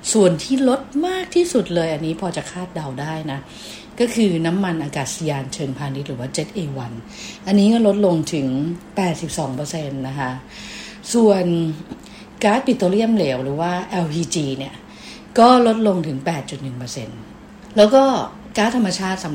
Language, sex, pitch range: English, female, 145-195 Hz